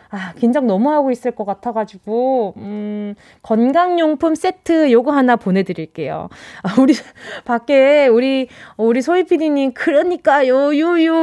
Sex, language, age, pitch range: female, Korean, 20-39, 210-310 Hz